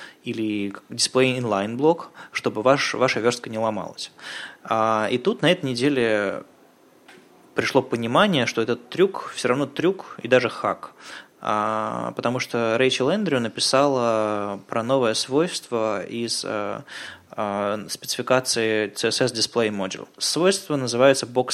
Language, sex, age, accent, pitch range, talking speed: Russian, male, 20-39, native, 110-145 Hz, 125 wpm